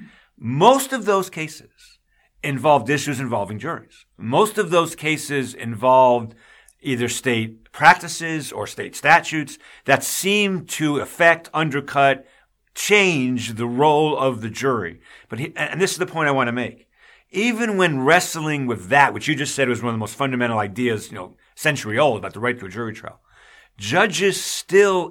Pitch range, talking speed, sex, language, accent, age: 120-160 Hz, 165 wpm, male, English, American, 50-69